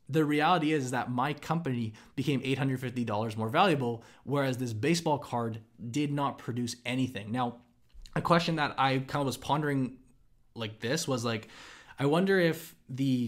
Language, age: English, 20-39